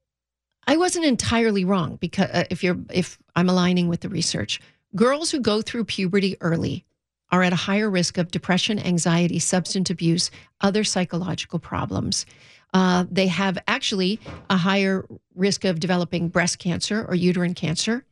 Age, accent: 50-69, American